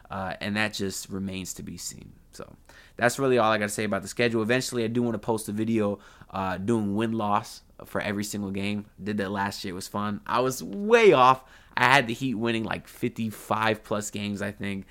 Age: 20-39